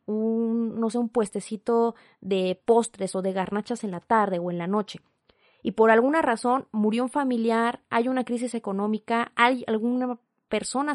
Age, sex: 30-49, female